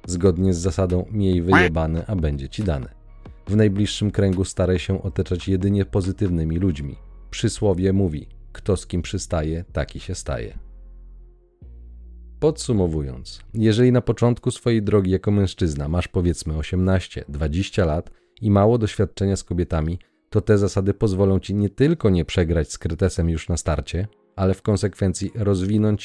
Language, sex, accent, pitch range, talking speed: Polish, male, native, 85-105 Hz, 145 wpm